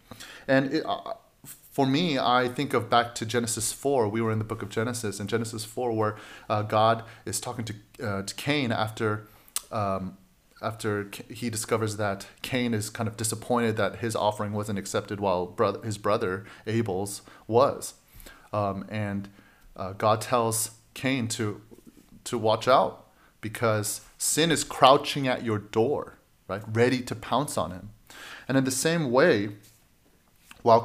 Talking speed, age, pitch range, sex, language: 160 wpm, 30-49, 105-125 Hz, male, English